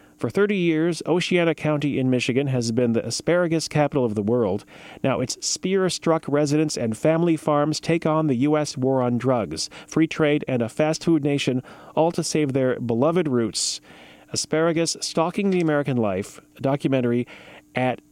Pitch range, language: 115-150 Hz, English